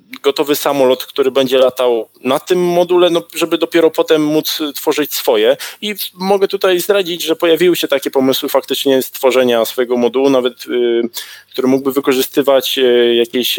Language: Polish